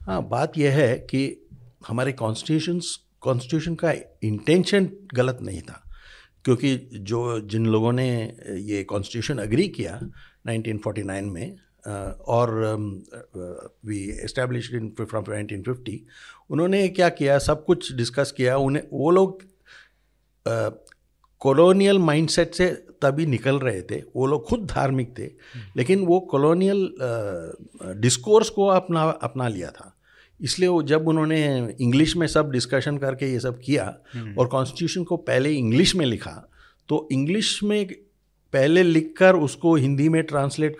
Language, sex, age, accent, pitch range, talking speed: Hindi, male, 60-79, native, 120-170 Hz, 135 wpm